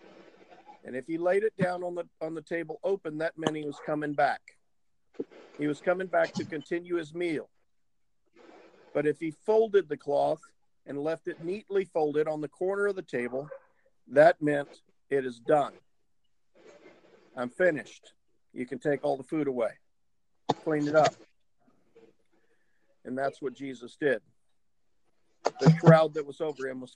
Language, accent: English, American